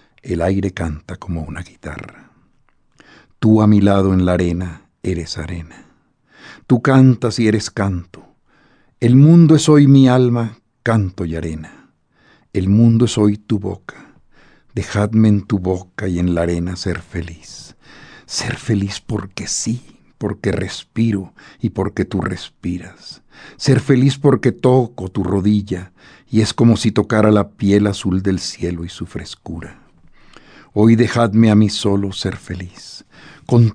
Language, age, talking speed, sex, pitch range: Spanish, 60-79, 145 wpm, male, 90-120 Hz